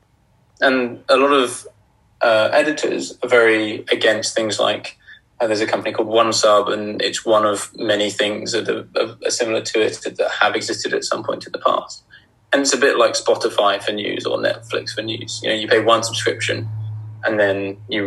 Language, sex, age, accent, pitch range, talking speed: English, male, 20-39, British, 105-140 Hz, 200 wpm